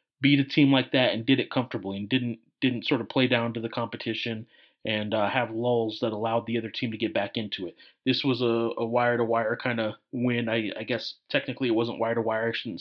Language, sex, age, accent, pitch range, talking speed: English, male, 30-49, American, 115-135 Hz, 235 wpm